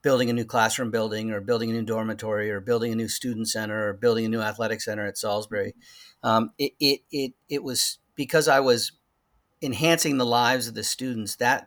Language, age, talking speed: English, 50-69, 205 wpm